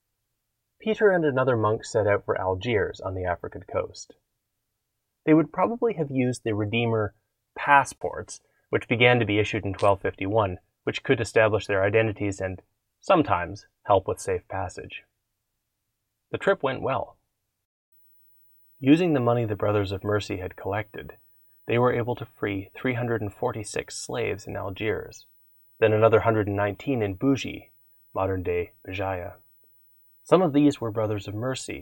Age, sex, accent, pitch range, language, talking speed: 30-49, male, American, 100-120 Hz, English, 140 wpm